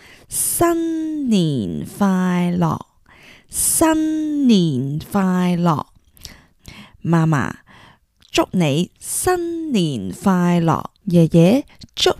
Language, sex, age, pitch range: Chinese, female, 20-39, 170-265 Hz